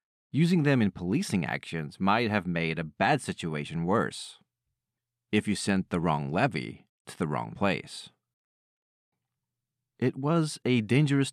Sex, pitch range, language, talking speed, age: male, 95-125 Hz, English, 140 wpm, 30-49